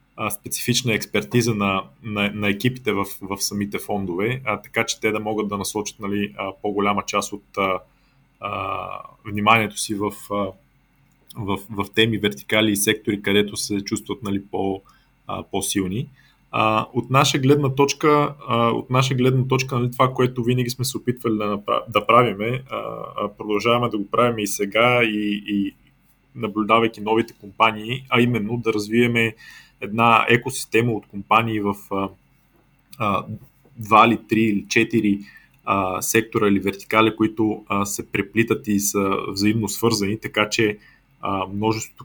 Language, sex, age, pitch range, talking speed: Bulgarian, male, 20-39, 100-115 Hz, 145 wpm